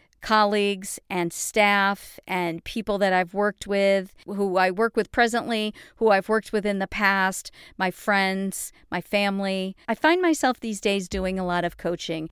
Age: 40-59